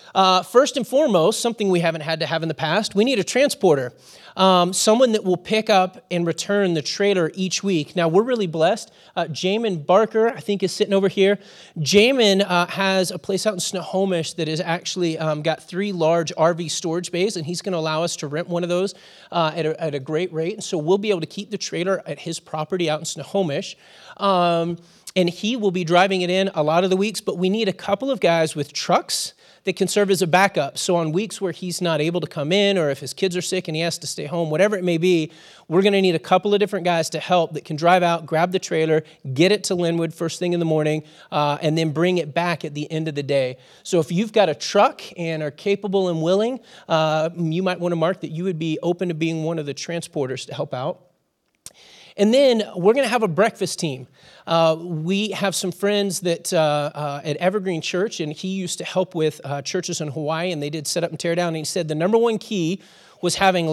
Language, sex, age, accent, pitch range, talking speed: English, male, 30-49, American, 160-195 Hz, 245 wpm